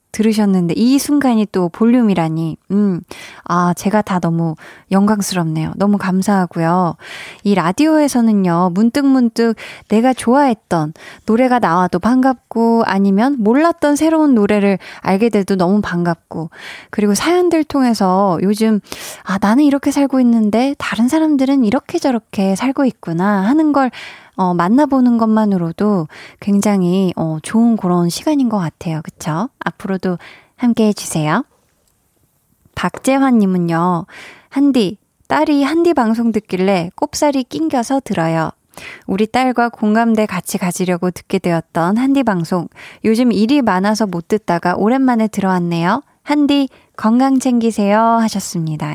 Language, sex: Korean, female